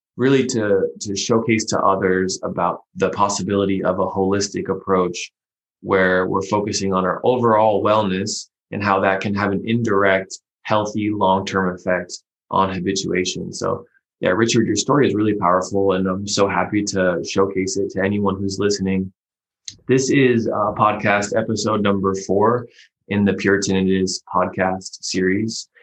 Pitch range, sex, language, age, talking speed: 95-110 Hz, male, English, 20-39, 145 wpm